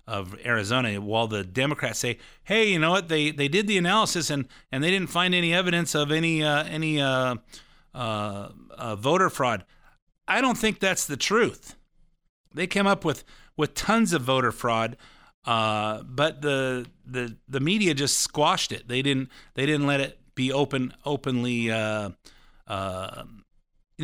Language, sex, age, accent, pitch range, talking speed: English, male, 50-69, American, 115-145 Hz, 165 wpm